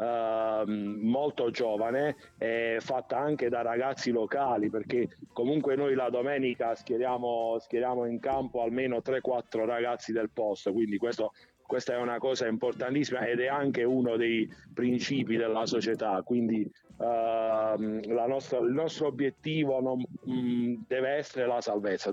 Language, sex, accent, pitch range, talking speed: Italian, male, native, 120-145 Hz, 140 wpm